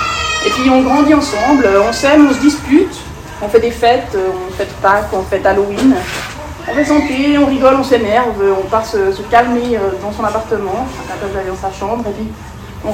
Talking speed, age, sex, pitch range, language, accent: 205 wpm, 20-39, female, 210-295 Hz, French, French